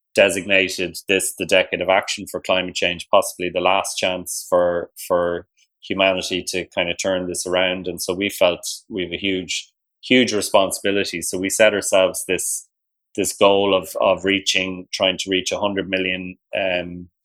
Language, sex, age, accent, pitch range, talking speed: English, male, 20-39, Irish, 90-95 Hz, 165 wpm